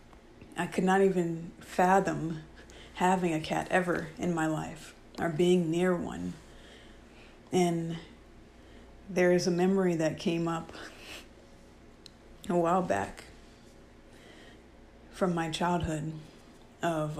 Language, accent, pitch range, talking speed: English, American, 160-185 Hz, 110 wpm